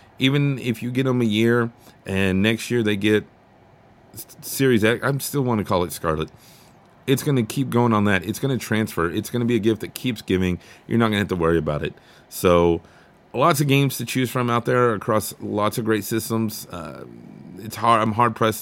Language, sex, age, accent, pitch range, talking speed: English, male, 30-49, American, 95-120 Hz, 225 wpm